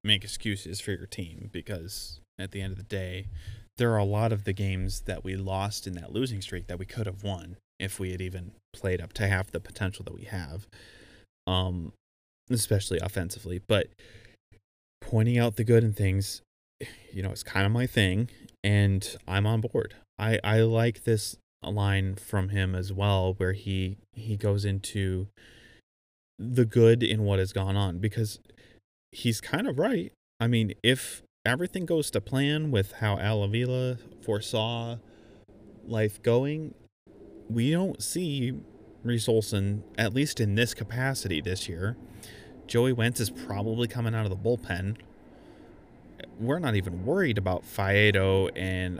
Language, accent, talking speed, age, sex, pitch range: English, American, 165 wpm, 20-39, male, 95-115 Hz